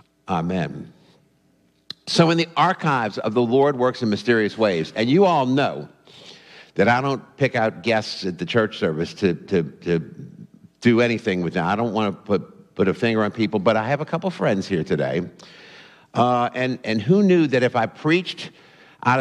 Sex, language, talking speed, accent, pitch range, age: male, English, 190 wpm, American, 110-150 Hz, 50-69